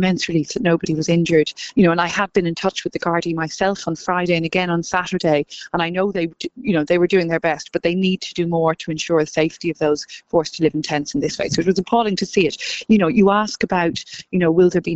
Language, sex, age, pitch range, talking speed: English, female, 40-59, 165-205 Hz, 290 wpm